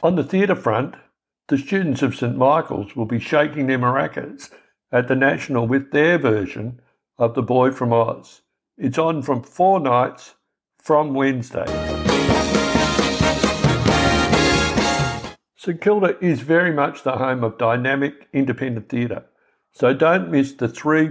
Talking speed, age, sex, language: 135 wpm, 60-79, male, English